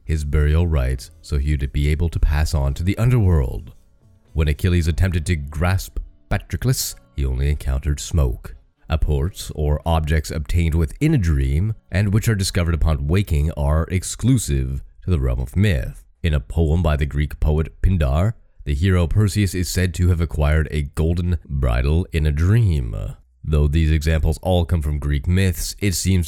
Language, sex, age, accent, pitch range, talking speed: English, male, 30-49, American, 70-90 Hz, 175 wpm